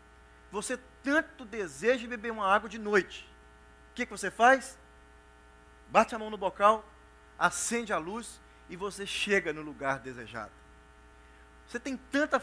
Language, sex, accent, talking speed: Portuguese, male, Brazilian, 145 wpm